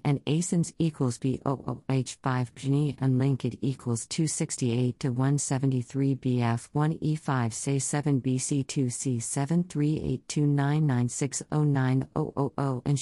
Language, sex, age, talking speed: English, female, 50-69, 65 wpm